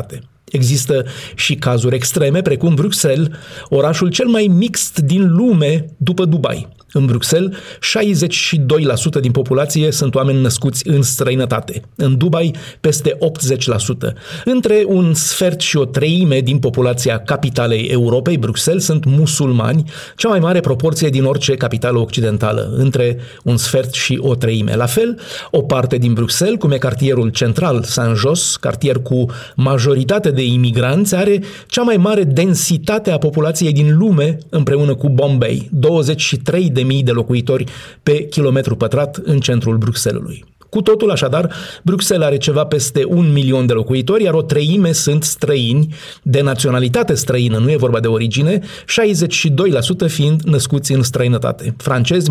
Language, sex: Romanian, male